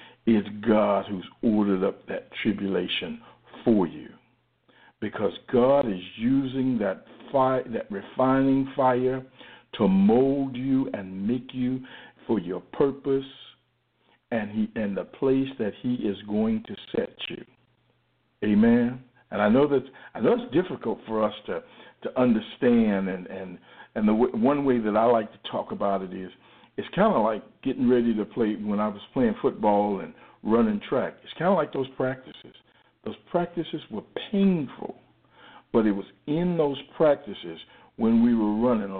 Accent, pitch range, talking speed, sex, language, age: American, 105-135 Hz, 160 wpm, male, English, 60-79